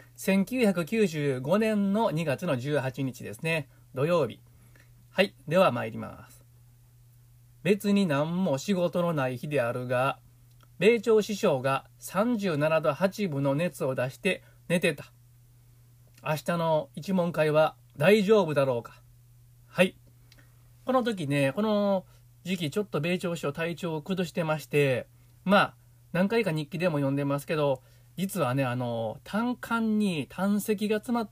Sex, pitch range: male, 120-190 Hz